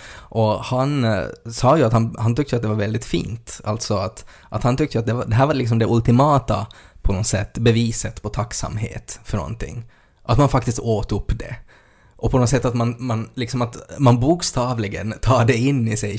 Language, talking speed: Swedish, 210 wpm